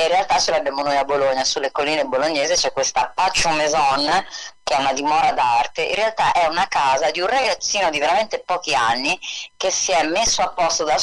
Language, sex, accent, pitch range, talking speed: Italian, female, native, 135-185 Hz, 210 wpm